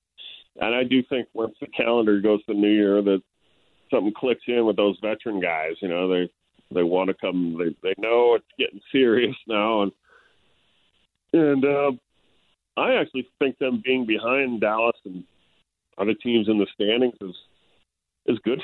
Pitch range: 105-130 Hz